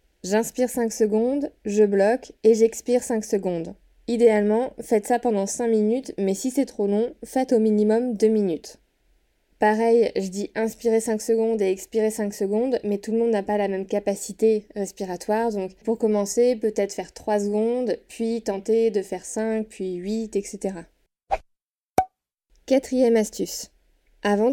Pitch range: 205-240 Hz